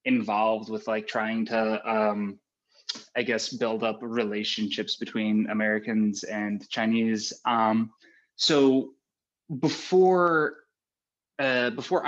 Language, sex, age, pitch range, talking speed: Indonesian, male, 20-39, 110-135 Hz, 100 wpm